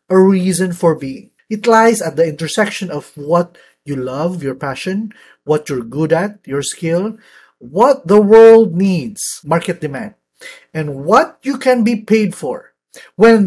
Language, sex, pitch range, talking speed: English, male, 170-230 Hz, 155 wpm